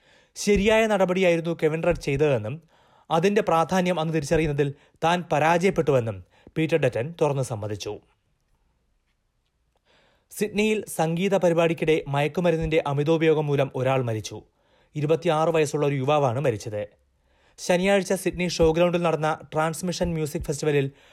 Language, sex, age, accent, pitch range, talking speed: Malayalam, male, 30-49, native, 130-170 Hz, 100 wpm